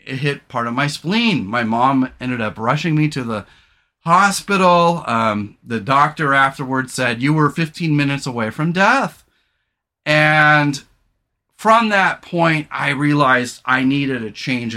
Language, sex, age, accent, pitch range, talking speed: English, male, 40-59, American, 130-170 Hz, 150 wpm